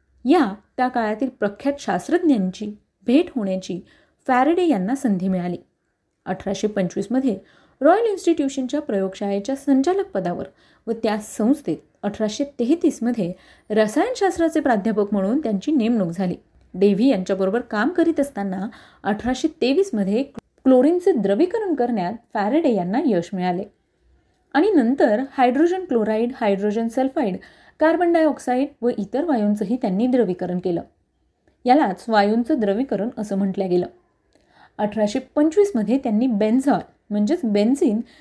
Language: Marathi